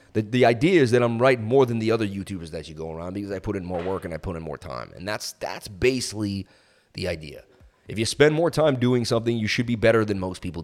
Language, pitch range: English, 85-125 Hz